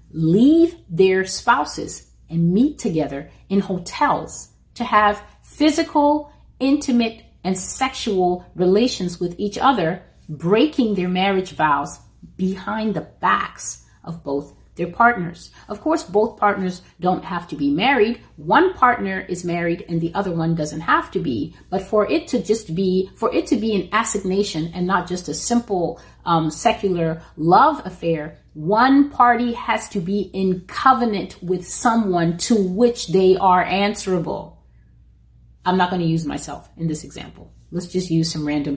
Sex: female